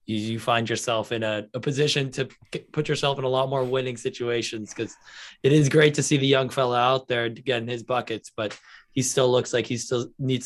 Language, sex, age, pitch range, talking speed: English, male, 20-39, 115-130 Hz, 220 wpm